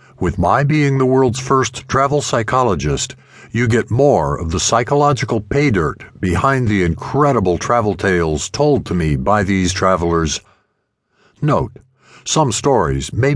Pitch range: 90-130 Hz